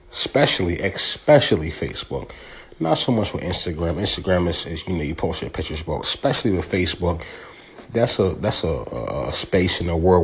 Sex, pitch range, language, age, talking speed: male, 90-120 Hz, English, 30-49, 175 wpm